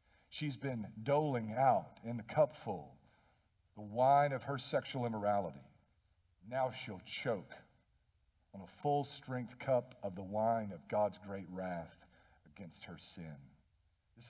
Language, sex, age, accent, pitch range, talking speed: English, male, 50-69, American, 100-140 Hz, 140 wpm